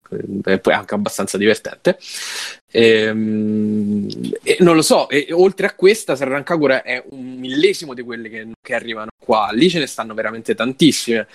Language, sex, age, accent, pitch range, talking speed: Italian, male, 20-39, native, 110-130 Hz, 165 wpm